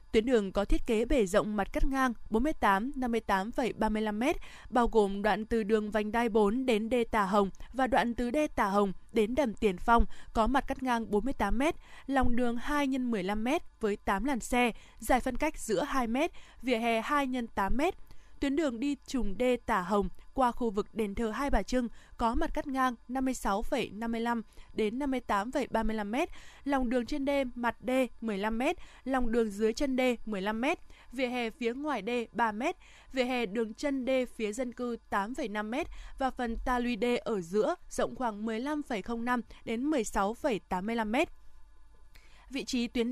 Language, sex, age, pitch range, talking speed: Vietnamese, female, 20-39, 215-265 Hz, 170 wpm